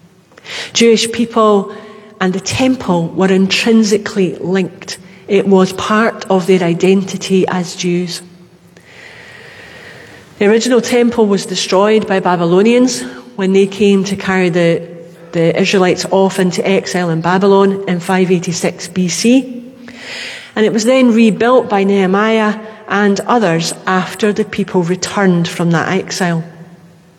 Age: 40-59